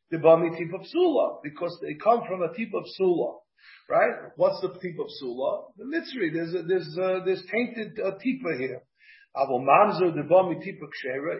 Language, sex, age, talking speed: English, male, 50-69, 155 wpm